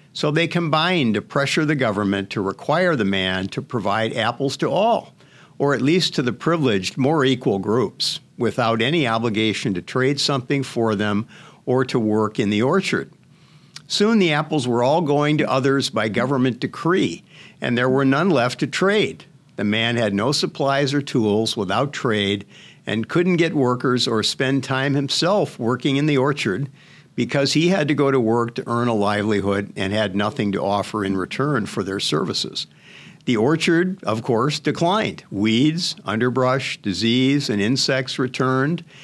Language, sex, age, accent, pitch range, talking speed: English, male, 60-79, American, 115-150 Hz, 170 wpm